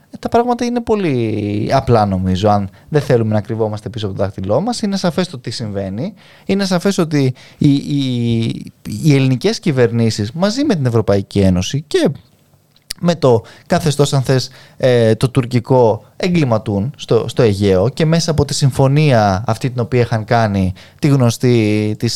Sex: male